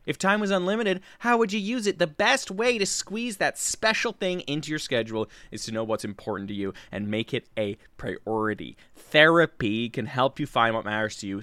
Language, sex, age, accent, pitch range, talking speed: English, male, 20-39, American, 110-170 Hz, 215 wpm